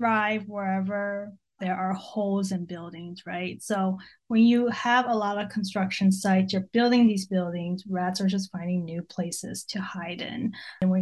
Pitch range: 190-230 Hz